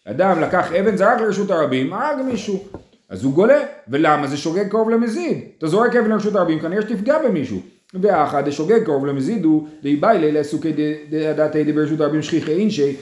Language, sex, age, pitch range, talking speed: Hebrew, male, 30-49, 140-205 Hz, 180 wpm